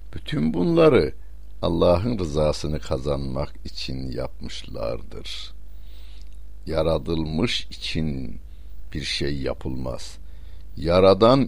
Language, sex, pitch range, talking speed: Turkish, male, 75-100 Hz, 70 wpm